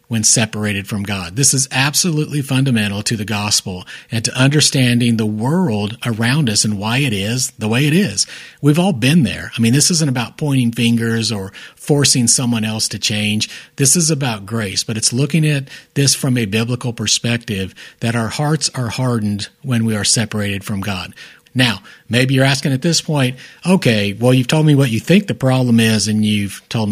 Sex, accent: male, American